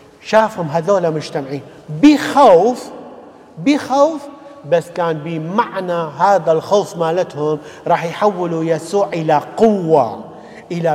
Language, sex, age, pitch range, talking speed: English, male, 50-69, 160-205 Hz, 95 wpm